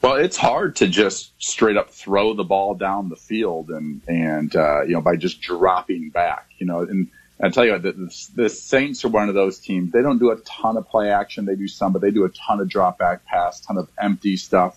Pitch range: 90-110 Hz